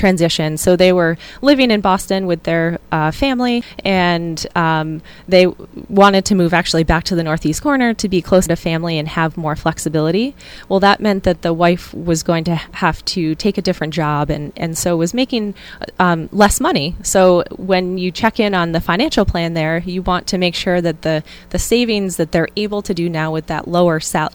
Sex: female